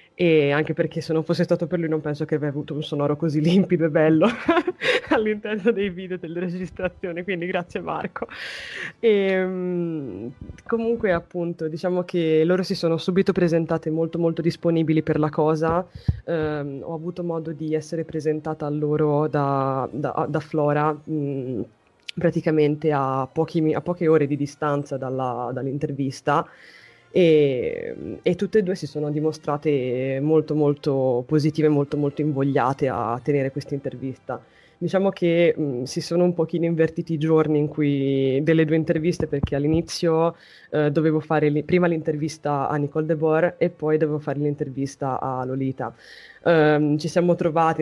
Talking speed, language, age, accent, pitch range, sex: 155 wpm, Italian, 20-39, native, 145-170 Hz, female